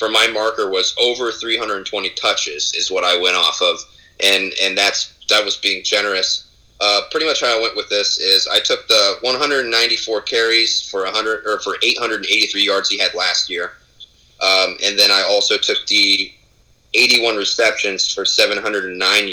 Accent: American